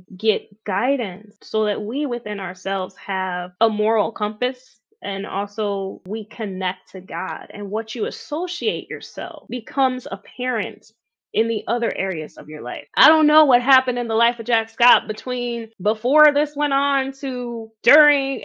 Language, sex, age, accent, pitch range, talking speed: English, female, 20-39, American, 200-255 Hz, 160 wpm